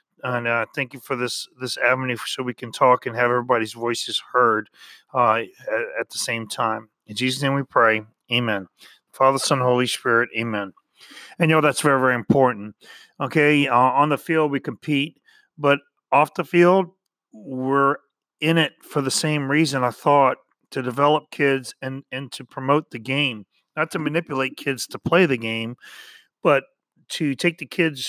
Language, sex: English, male